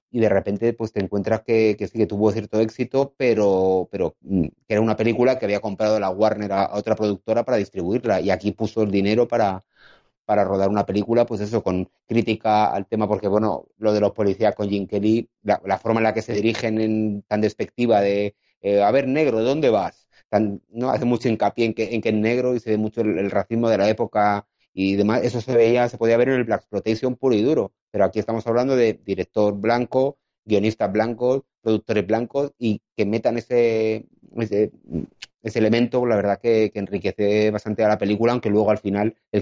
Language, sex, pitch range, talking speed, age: Spanish, male, 100-115 Hz, 215 wpm, 30-49